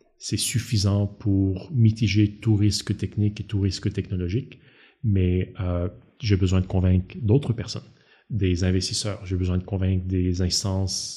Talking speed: 145 wpm